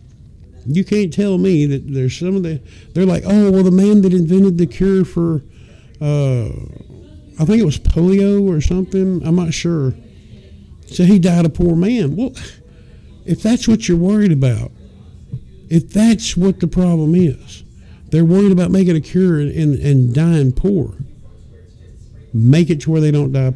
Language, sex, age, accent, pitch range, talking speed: English, male, 50-69, American, 120-180 Hz, 170 wpm